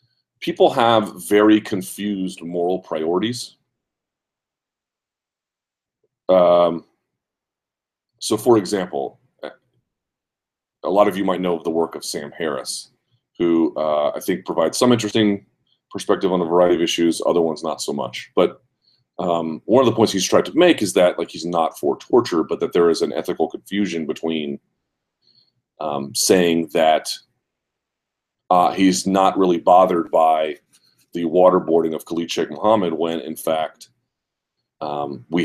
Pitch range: 80-105 Hz